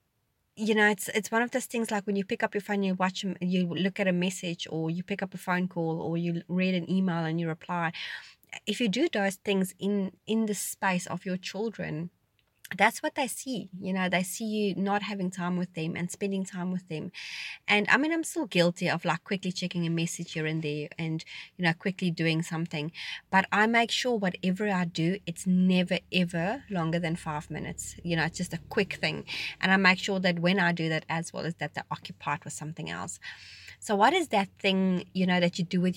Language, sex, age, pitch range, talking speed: English, female, 30-49, 175-215 Hz, 230 wpm